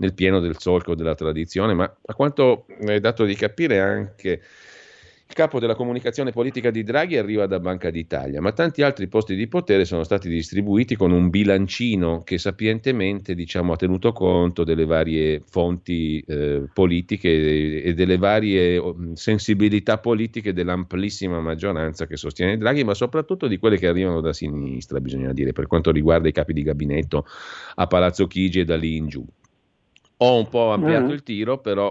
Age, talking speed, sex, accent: 40-59, 165 wpm, male, native